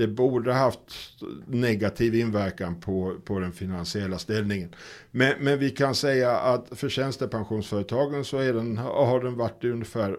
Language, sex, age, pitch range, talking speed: Swedish, male, 50-69, 95-115 Hz, 155 wpm